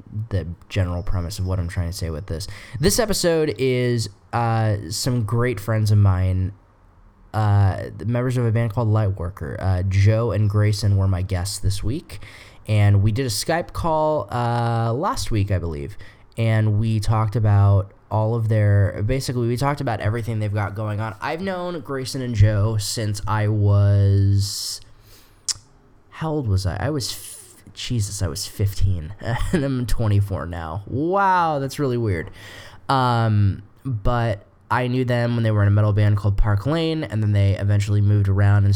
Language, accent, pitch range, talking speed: English, American, 100-115 Hz, 175 wpm